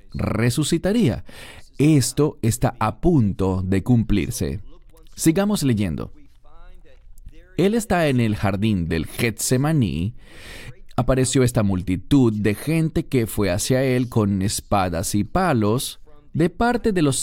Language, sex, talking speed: English, male, 115 wpm